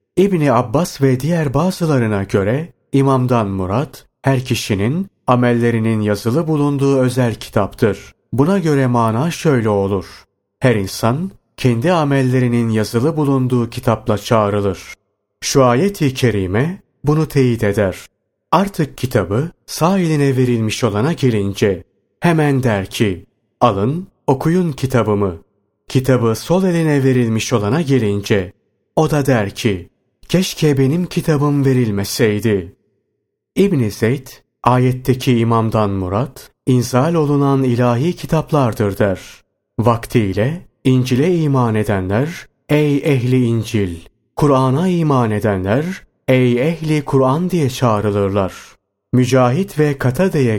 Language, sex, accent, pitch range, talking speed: Turkish, male, native, 105-145 Hz, 105 wpm